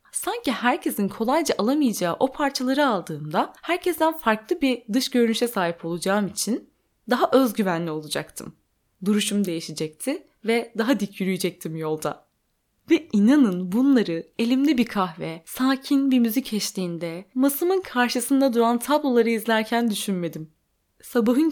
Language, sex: Turkish, female